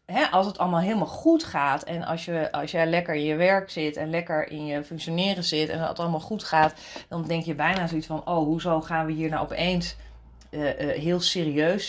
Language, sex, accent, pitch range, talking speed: Dutch, female, Dutch, 160-190 Hz, 215 wpm